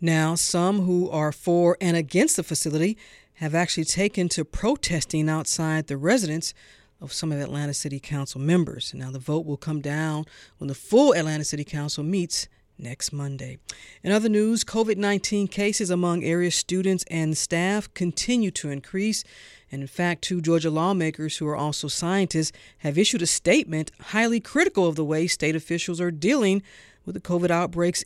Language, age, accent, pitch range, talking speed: English, 40-59, American, 155-195 Hz, 170 wpm